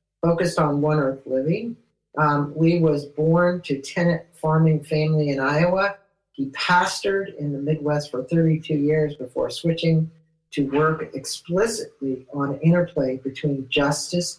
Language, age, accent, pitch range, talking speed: English, 50-69, American, 140-165 Hz, 135 wpm